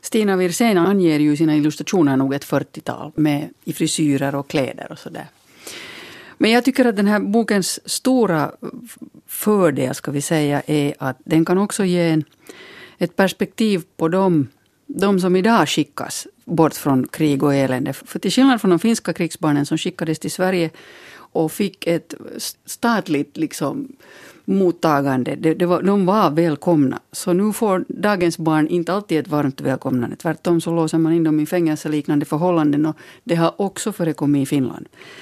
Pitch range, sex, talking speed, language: 155-210 Hz, female, 165 wpm, Finnish